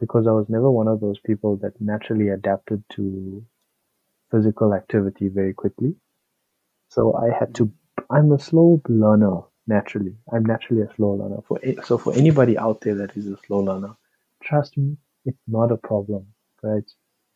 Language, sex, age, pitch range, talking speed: English, male, 30-49, 100-120 Hz, 165 wpm